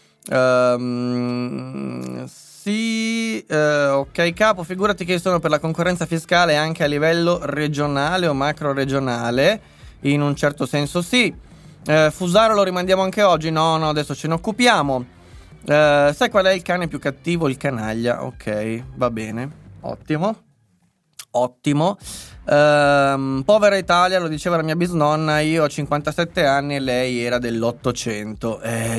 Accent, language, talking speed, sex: native, Italian, 140 wpm, male